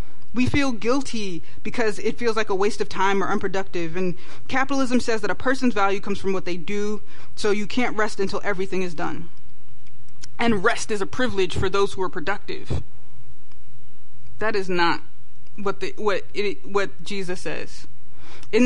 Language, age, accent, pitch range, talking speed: English, 20-39, American, 170-225 Hz, 175 wpm